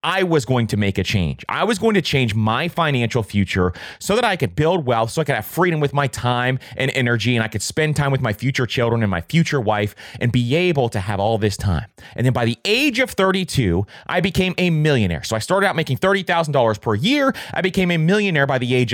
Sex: male